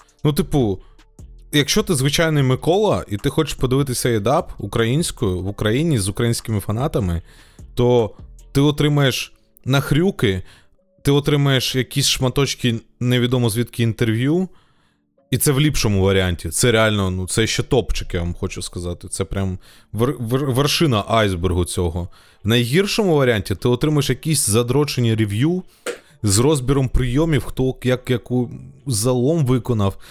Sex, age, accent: male, 20-39, native